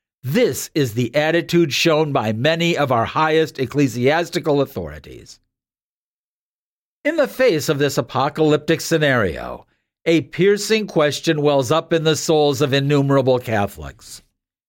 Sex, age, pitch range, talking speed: male, 50-69, 135-175 Hz, 125 wpm